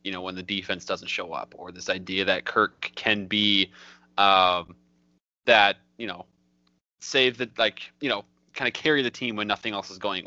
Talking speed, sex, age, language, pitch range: 200 wpm, male, 20-39, English, 90-110 Hz